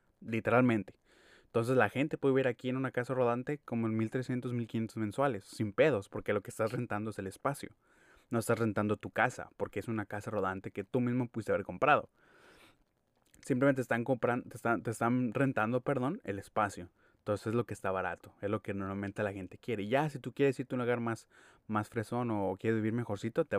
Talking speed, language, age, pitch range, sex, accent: 210 wpm, Spanish, 20-39, 100-125 Hz, male, Mexican